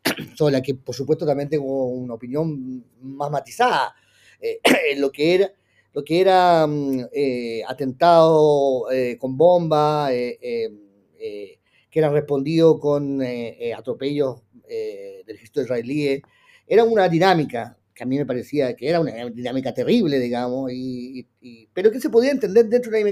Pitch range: 135-200 Hz